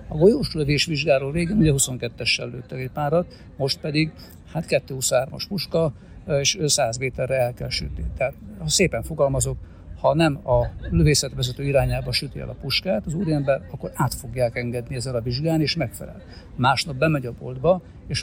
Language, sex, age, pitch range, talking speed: Hungarian, male, 60-79, 120-150 Hz, 160 wpm